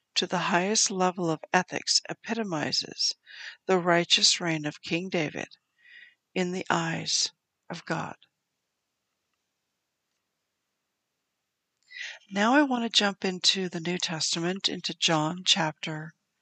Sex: female